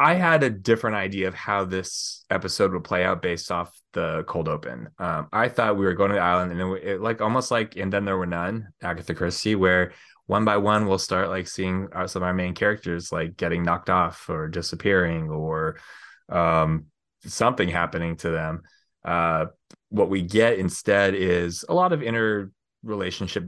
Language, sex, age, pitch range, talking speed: English, male, 20-39, 85-105 Hz, 190 wpm